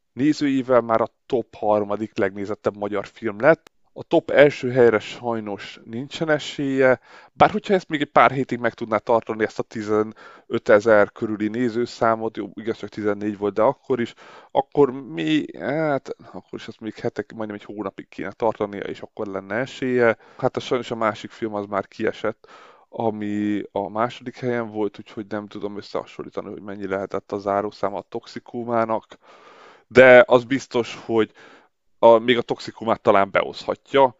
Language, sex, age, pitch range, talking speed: Hungarian, male, 20-39, 105-120 Hz, 160 wpm